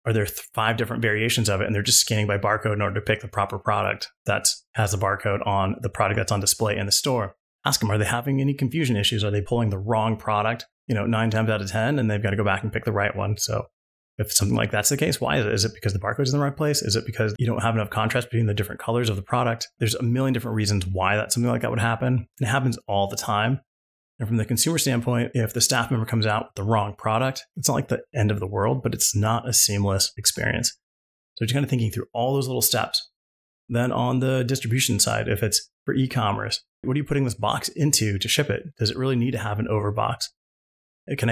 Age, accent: 30-49, American